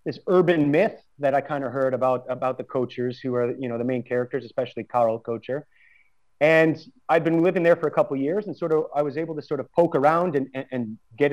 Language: English